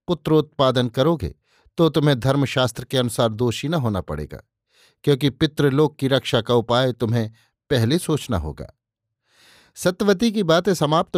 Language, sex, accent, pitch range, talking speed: Hindi, male, native, 120-155 Hz, 135 wpm